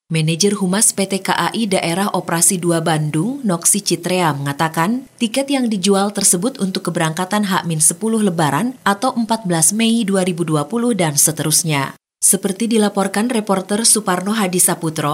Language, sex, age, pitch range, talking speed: Indonesian, female, 30-49, 160-205 Hz, 120 wpm